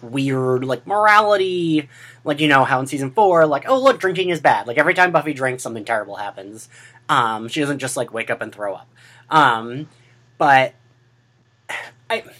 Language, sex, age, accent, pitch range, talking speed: English, male, 30-49, American, 125-165 Hz, 180 wpm